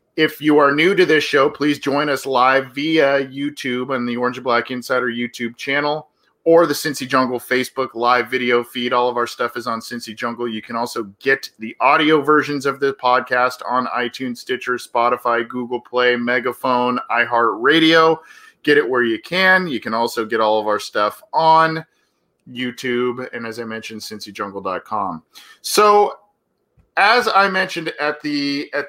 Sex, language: male, English